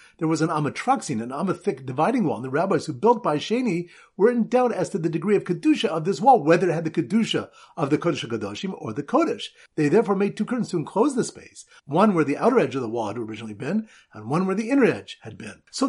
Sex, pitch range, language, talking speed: male, 145-220 Hz, English, 255 wpm